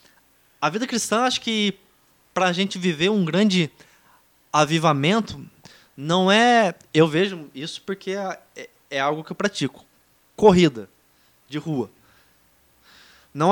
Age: 20-39